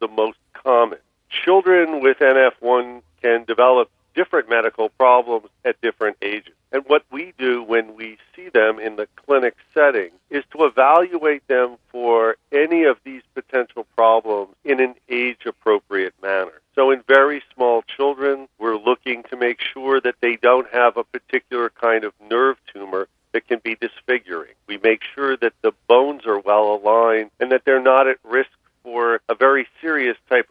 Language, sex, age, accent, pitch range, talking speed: English, male, 50-69, American, 110-130 Hz, 165 wpm